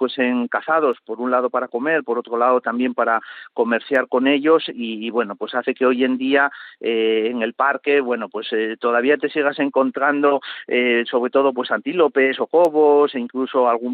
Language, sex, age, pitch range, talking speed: Spanish, male, 40-59, 115-140 Hz, 200 wpm